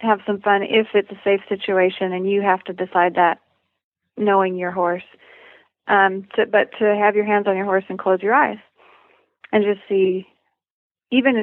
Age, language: 30-49, English